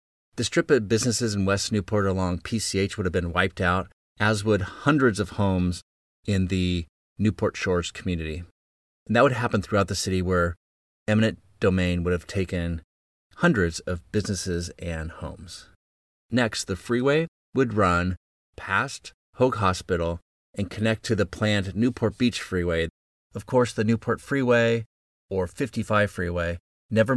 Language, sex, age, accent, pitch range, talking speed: English, male, 30-49, American, 85-110 Hz, 150 wpm